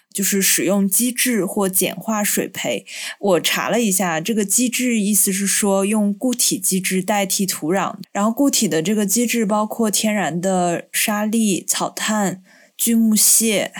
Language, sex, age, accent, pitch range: Chinese, female, 20-39, native, 180-220 Hz